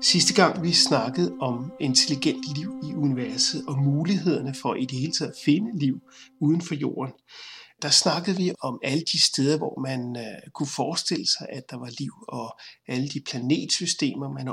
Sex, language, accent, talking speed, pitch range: male, Danish, native, 180 wpm, 130-160 Hz